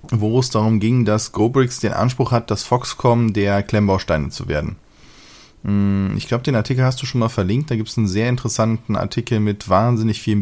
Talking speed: 195 wpm